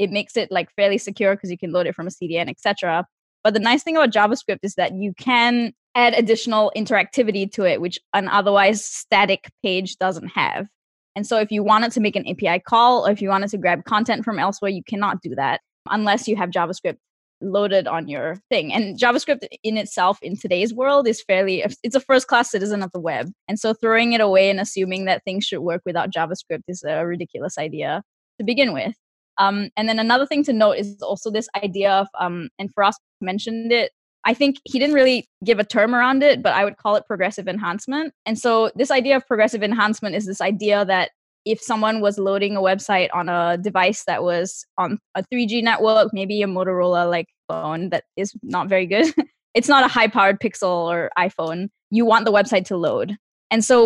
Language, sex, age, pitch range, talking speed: English, female, 10-29, 190-230 Hz, 210 wpm